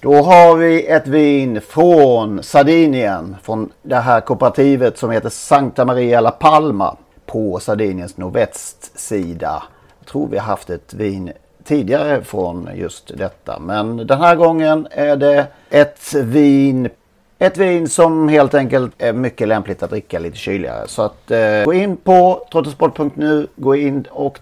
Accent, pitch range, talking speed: native, 115-150 Hz, 145 wpm